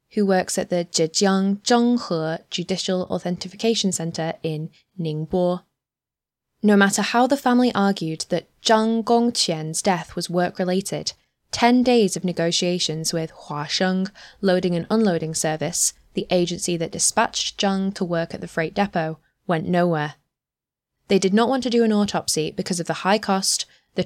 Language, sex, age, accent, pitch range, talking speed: English, female, 10-29, British, 165-200 Hz, 150 wpm